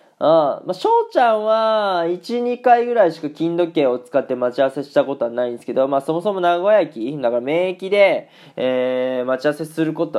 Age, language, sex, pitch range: 20-39, Japanese, male, 130-175 Hz